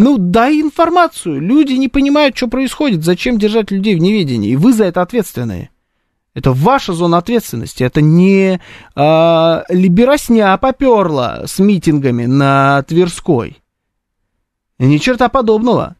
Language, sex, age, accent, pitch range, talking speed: Russian, male, 20-39, native, 135-220 Hz, 125 wpm